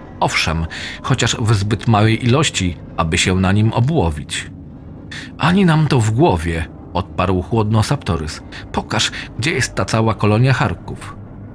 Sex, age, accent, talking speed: male, 40-59, native, 135 wpm